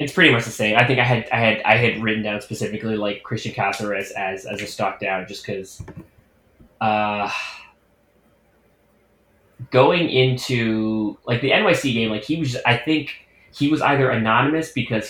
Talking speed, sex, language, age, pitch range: 175 wpm, male, English, 20-39, 105-120 Hz